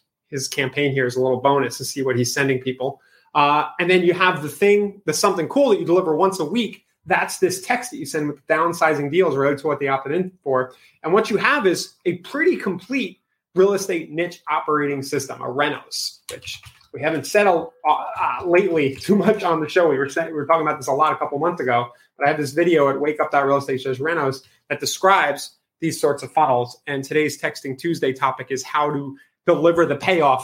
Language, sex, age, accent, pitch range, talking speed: English, male, 30-49, American, 140-185 Hz, 220 wpm